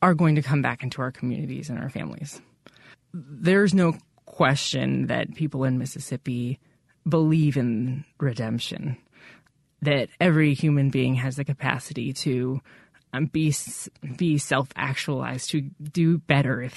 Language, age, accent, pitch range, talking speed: English, 20-39, American, 135-160 Hz, 130 wpm